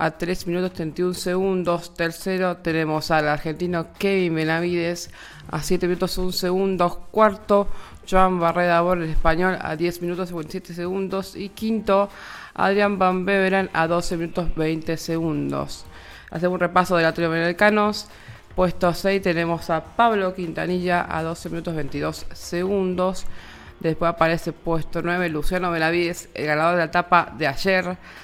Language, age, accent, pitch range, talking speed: Spanish, 20-39, Argentinian, 160-185 Hz, 140 wpm